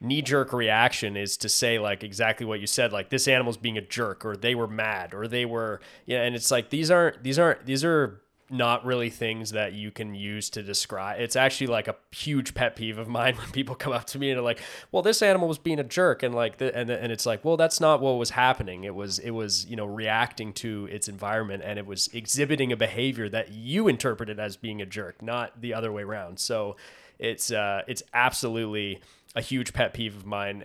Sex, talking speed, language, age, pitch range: male, 235 wpm, English, 20-39, 100-120 Hz